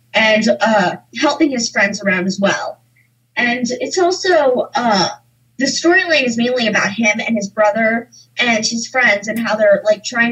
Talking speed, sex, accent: 170 wpm, female, American